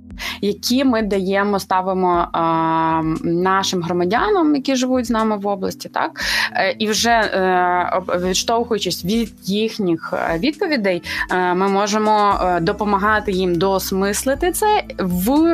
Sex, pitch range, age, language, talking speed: female, 180-225 Hz, 20-39, Ukrainian, 115 wpm